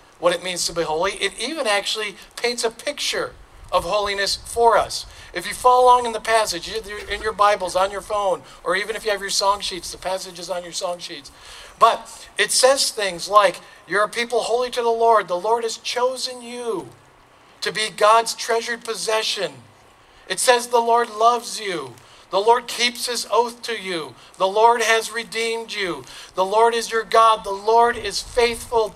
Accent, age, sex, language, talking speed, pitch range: American, 50-69, male, English, 195 wpm, 195-235 Hz